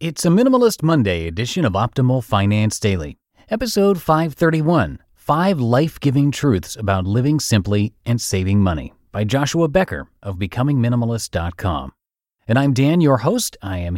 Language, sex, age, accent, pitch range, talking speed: English, male, 30-49, American, 100-145 Hz, 140 wpm